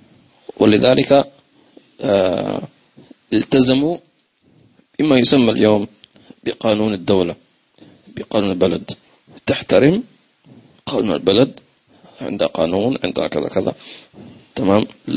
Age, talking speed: 40-59, 70 wpm